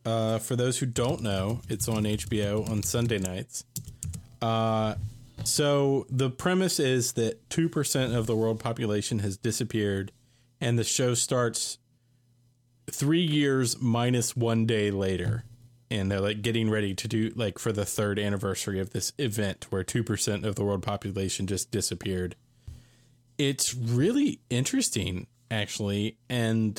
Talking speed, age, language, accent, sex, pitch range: 140 wpm, 20-39, English, American, male, 110-125 Hz